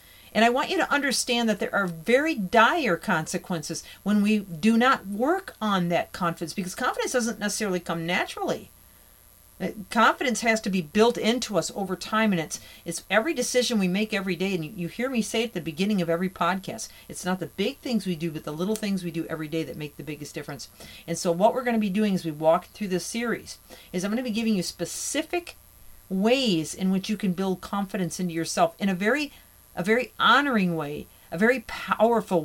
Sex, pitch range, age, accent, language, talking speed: female, 170-225 Hz, 40-59, American, English, 215 wpm